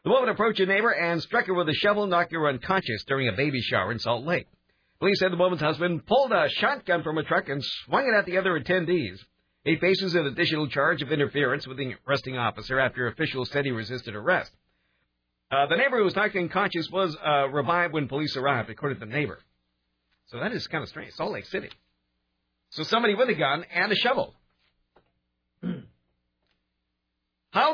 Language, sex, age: English, male, 50-69